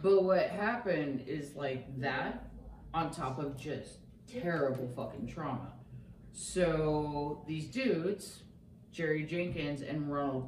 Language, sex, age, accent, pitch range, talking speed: English, female, 30-49, American, 140-180 Hz, 115 wpm